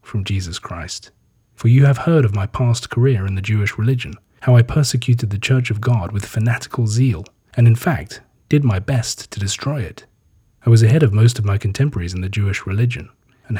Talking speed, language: 205 wpm, English